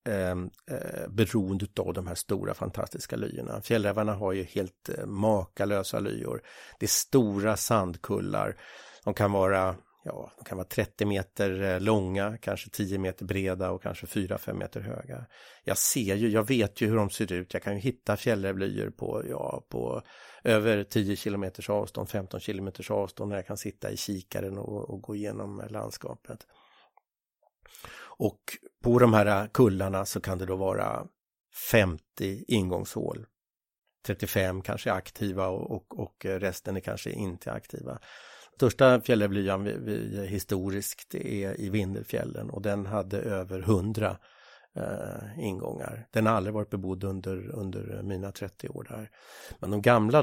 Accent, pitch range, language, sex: Swedish, 95-110 Hz, English, male